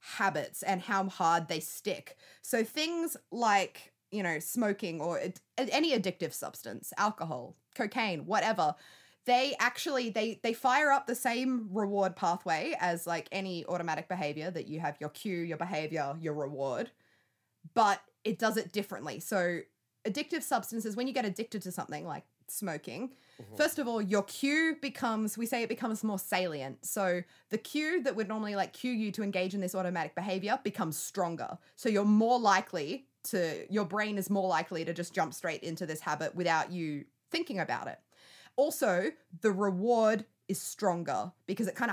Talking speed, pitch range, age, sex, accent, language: 170 wpm, 175-230 Hz, 20-39, female, Australian, English